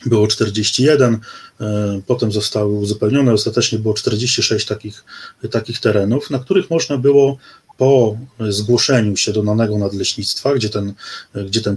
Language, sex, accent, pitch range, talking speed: Polish, male, native, 105-125 Hz, 120 wpm